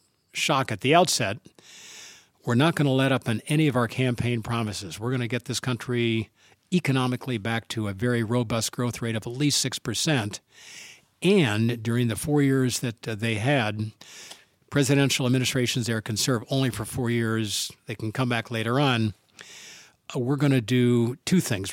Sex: male